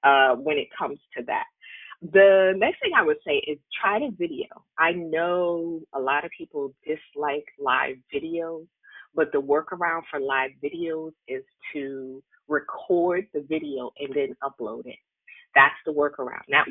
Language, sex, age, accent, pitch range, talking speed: English, female, 30-49, American, 145-190 Hz, 160 wpm